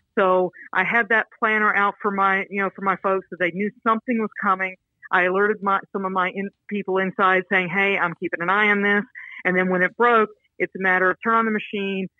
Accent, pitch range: American, 180-210 Hz